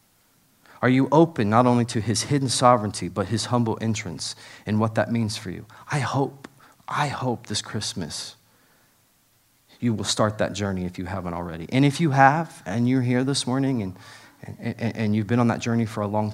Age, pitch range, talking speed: 30-49, 100-115 Hz, 200 wpm